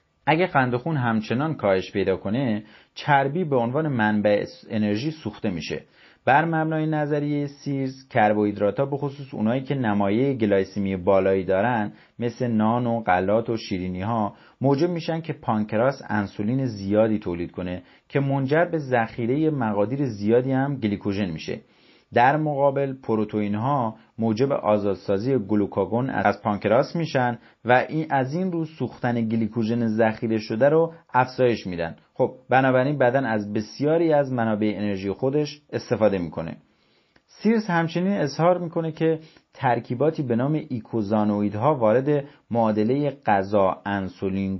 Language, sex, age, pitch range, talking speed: Persian, male, 30-49, 105-140 Hz, 130 wpm